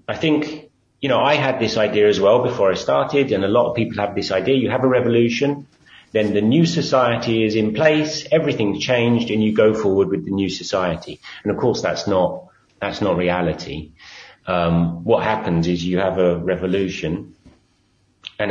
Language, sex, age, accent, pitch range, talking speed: English, male, 30-49, British, 90-120 Hz, 190 wpm